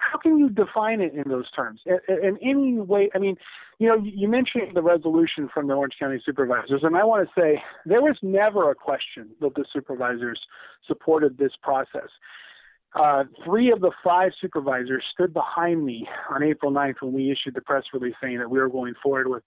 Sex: male